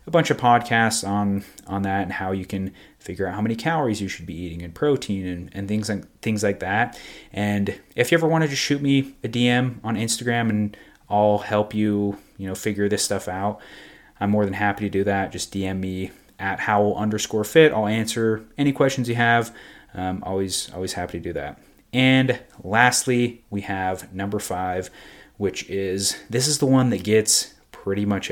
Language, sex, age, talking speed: English, male, 30-49, 200 wpm